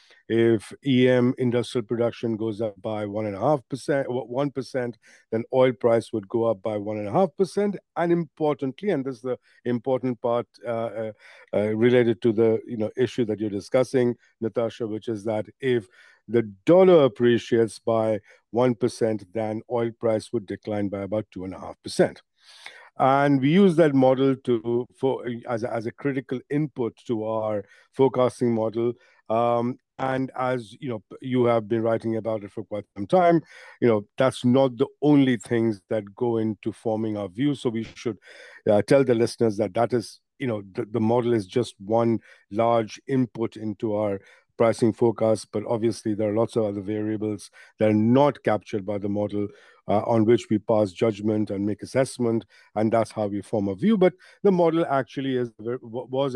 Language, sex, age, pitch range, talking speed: English, male, 50-69, 110-130 Hz, 185 wpm